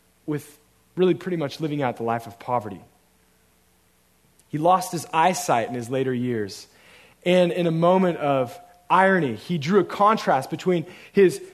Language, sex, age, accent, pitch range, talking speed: English, male, 30-49, American, 125-185 Hz, 155 wpm